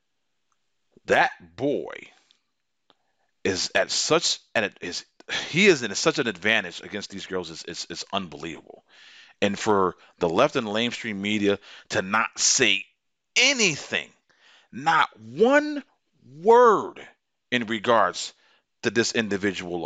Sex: male